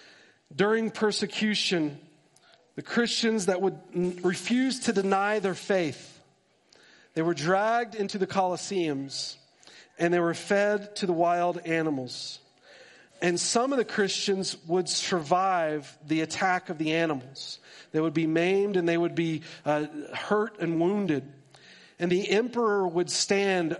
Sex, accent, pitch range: male, American, 160-190 Hz